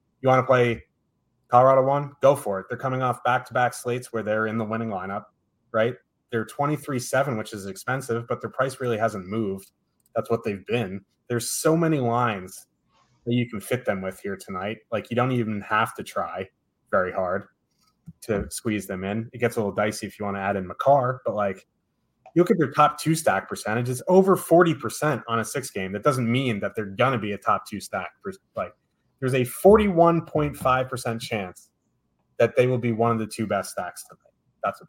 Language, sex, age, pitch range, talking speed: English, male, 20-39, 110-140 Hz, 205 wpm